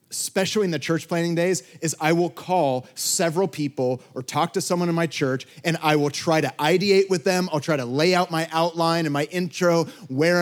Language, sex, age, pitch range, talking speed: English, male, 30-49, 140-185 Hz, 220 wpm